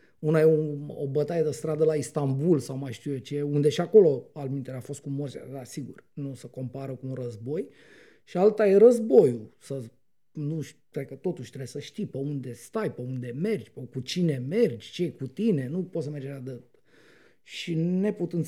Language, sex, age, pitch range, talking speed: Romanian, male, 30-49, 140-195 Hz, 205 wpm